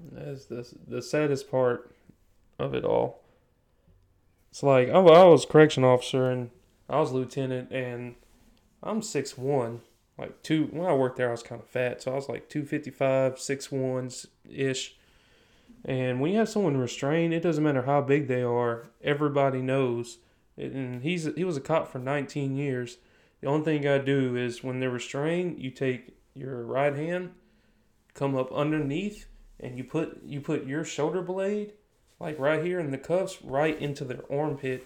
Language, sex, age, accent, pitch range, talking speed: English, male, 20-39, American, 125-150 Hz, 180 wpm